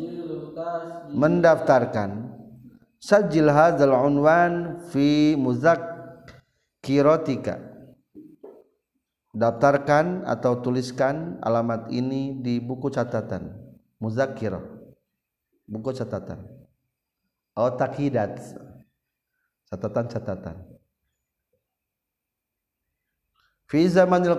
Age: 50-69